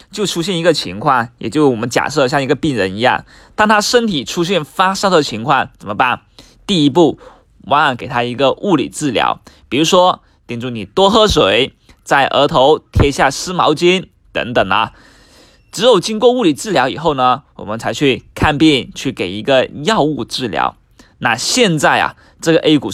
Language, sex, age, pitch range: Chinese, male, 20-39, 130-185 Hz